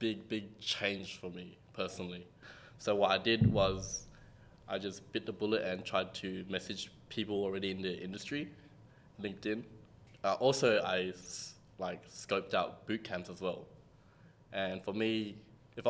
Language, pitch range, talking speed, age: English, 95-120 Hz, 155 wpm, 20-39